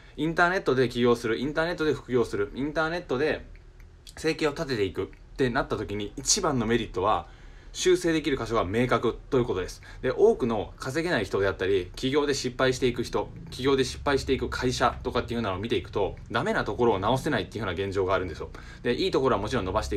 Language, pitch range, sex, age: Japanese, 110-140 Hz, male, 20-39